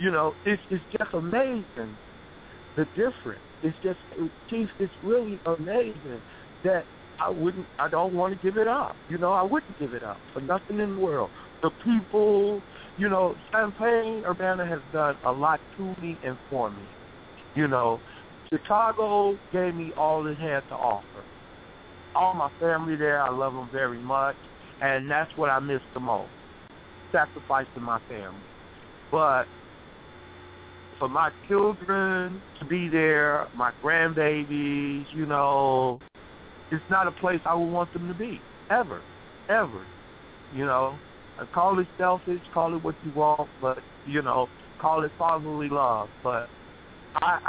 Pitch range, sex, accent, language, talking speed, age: 130-180 Hz, male, American, English, 155 wpm, 60-79